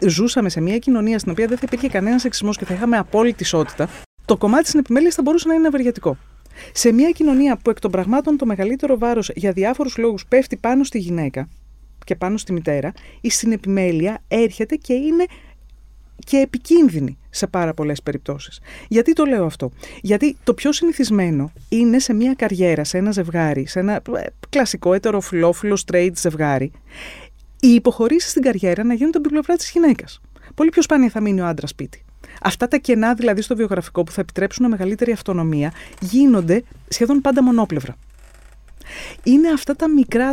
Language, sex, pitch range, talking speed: Greek, female, 180-260 Hz, 170 wpm